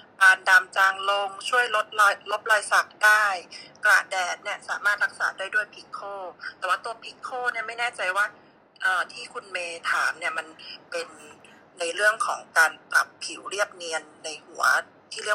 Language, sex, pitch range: Thai, female, 180-240 Hz